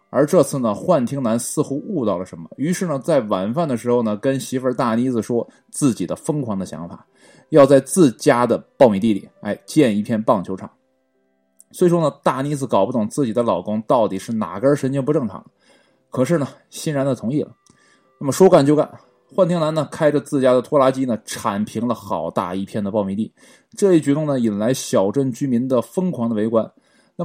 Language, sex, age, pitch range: Chinese, male, 20-39, 110-150 Hz